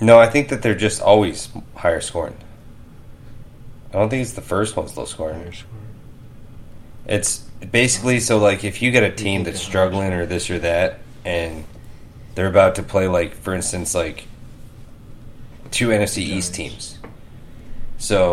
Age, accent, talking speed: 30-49, American, 155 wpm